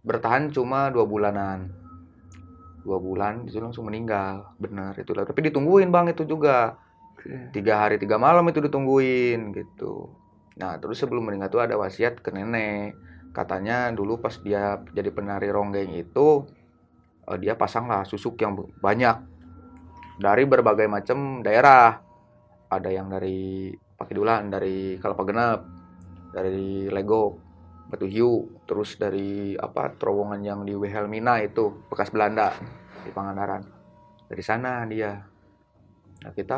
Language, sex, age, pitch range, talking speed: Indonesian, male, 20-39, 95-120 Hz, 125 wpm